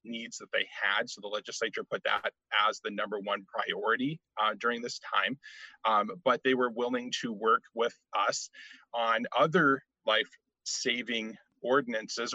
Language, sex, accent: English, male, American